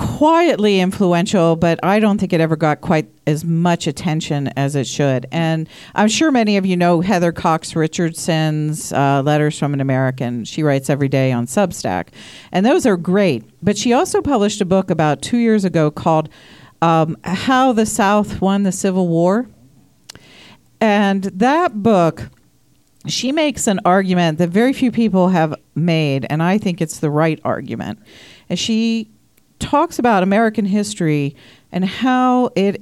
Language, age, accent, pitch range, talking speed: English, 50-69, American, 155-210 Hz, 165 wpm